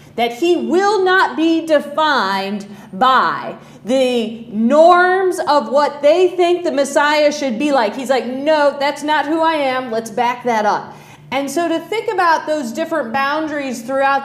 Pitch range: 255-330 Hz